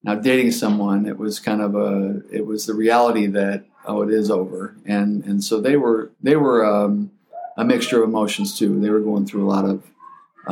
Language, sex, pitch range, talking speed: English, male, 105-145 Hz, 215 wpm